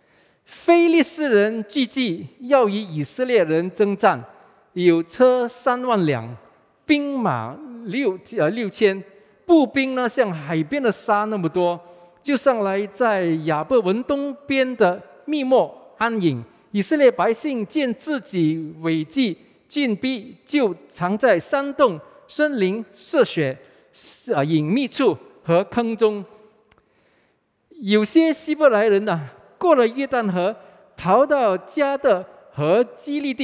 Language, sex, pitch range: English, male, 175-260 Hz